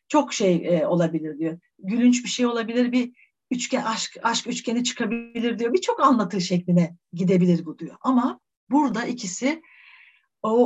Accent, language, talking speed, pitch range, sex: native, Turkish, 150 wpm, 175-245 Hz, female